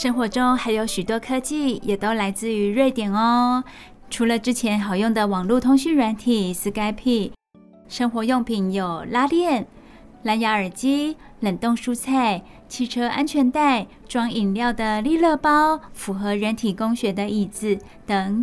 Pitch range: 210-260 Hz